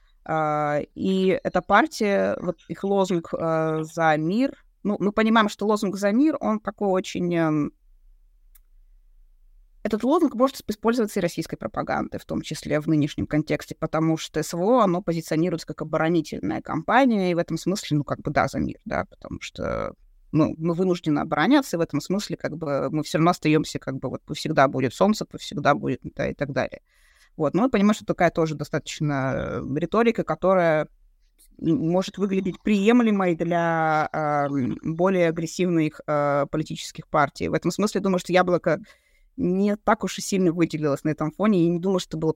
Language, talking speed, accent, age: Russian, 170 wpm, native, 20-39